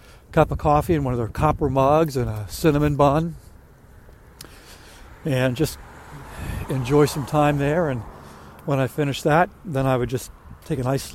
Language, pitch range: English, 115-150 Hz